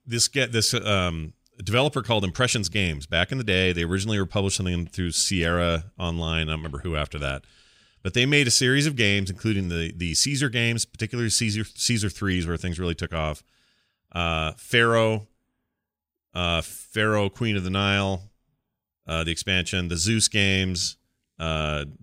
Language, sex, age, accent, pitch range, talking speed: English, male, 30-49, American, 90-120 Hz, 170 wpm